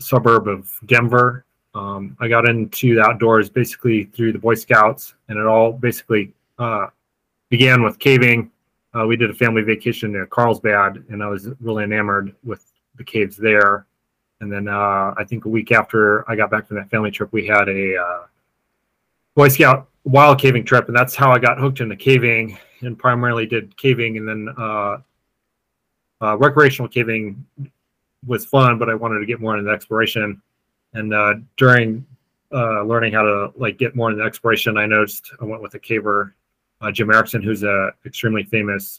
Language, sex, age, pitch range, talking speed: English, male, 30-49, 105-120 Hz, 180 wpm